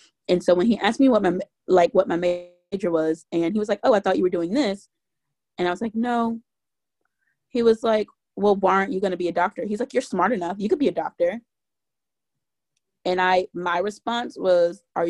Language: English